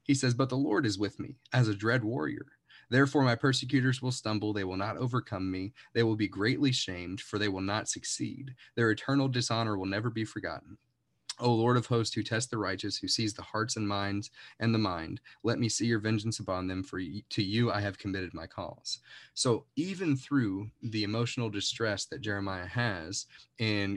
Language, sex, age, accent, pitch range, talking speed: English, male, 30-49, American, 95-115 Hz, 205 wpm